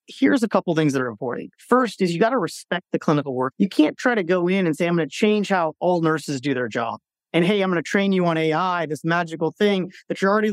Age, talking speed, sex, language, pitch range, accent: 30-49, 285 wpm, male, English, 155-200 Hz, American